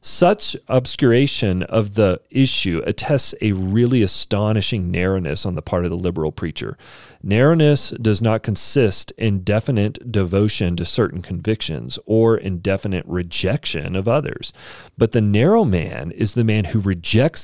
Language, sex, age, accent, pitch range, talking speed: English, male, 40-59, American, 95-125 Hz, 140 wpm